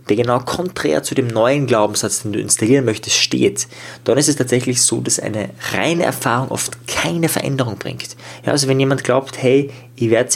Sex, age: male, 20-39